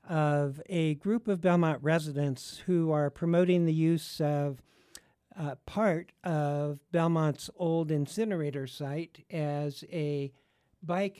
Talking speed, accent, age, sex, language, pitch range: 120 wpm, American, 60-79, male, English, 140-175 Hz